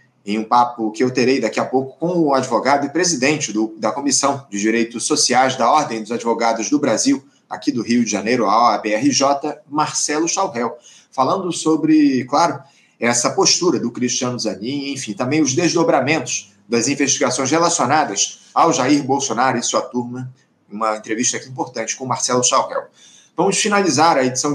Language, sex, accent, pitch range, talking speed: Portuguese, male, Brazilian, 125-160 Hz, 165 wpm